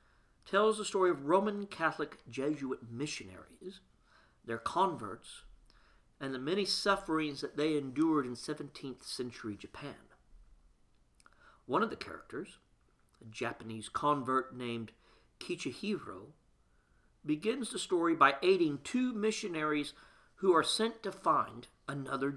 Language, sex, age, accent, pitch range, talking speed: English, male, 50-69, American, 120-185 Hz, 115 wpm